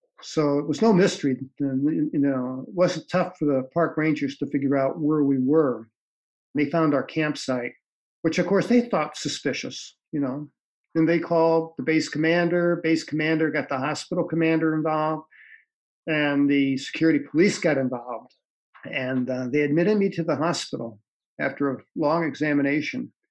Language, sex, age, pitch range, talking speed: English, male, 50-69, 140-165 Hz, 160 wpm